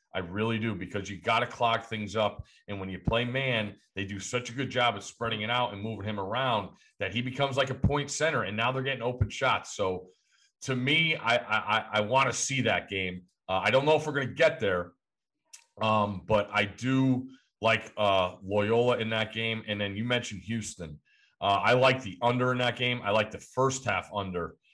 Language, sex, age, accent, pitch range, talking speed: English, male, 40-59, American, 100-125 Hz, 225 wpm